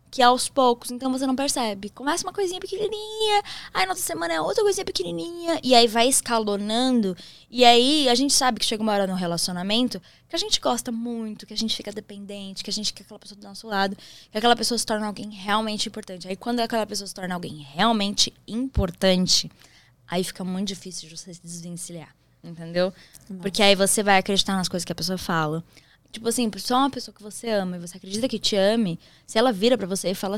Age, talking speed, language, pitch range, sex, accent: 10-29, 215 wpm, Portuguese, 185-235 Hz, female, Brazilian